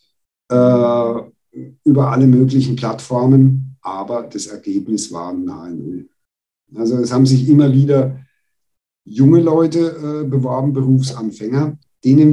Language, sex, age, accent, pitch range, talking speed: German, male, 50-69, German, 105-135 Hz, 110 wpm